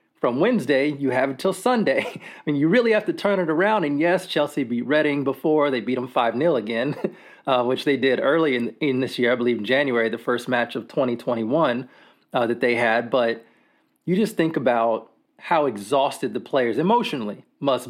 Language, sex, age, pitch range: English, male, 30-49, 120-165 Hz